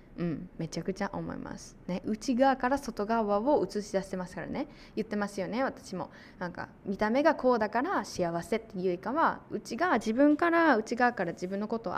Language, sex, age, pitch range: Japanese, female, 20-39, 175-235 Hz